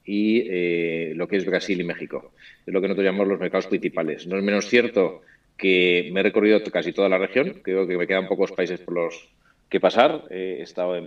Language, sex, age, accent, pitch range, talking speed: Spanish, male, 30-49, Spanish, 90-105 Hz, 220 wpm